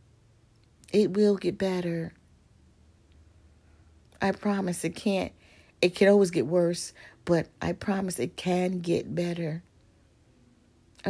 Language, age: English, 40-59